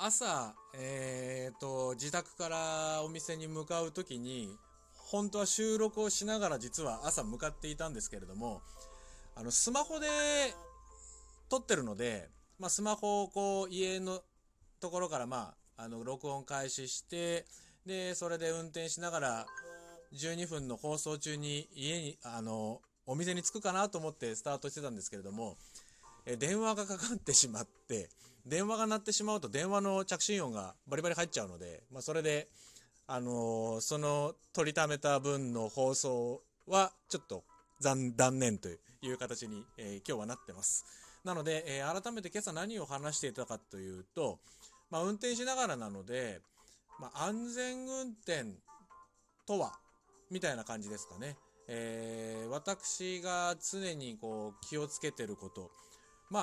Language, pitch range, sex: Japanese, 120-185 Hz, male